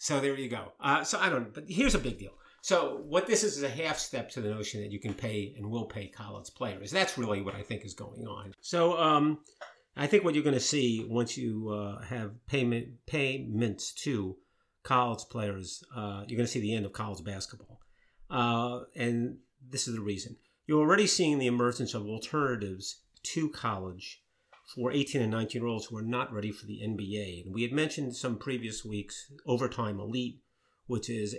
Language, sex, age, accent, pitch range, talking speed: English, male, 50-69, American, 105-125 Hz, 205 wpm